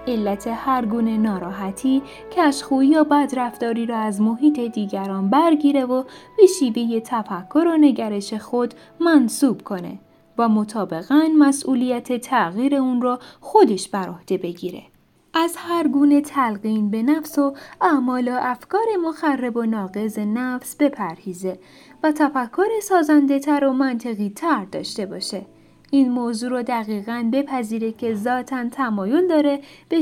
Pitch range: 215-285 Hz